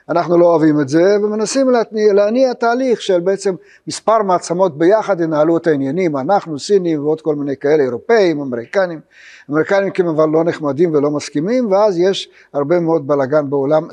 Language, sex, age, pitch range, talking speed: Hebrew, male, 60-79, 155-200 Hz, 160 wpm